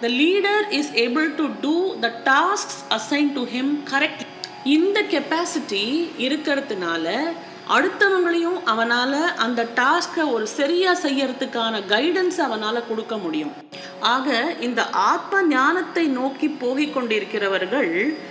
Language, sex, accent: Tamil, female, native